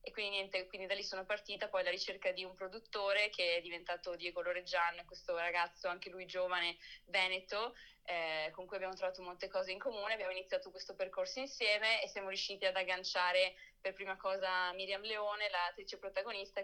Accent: native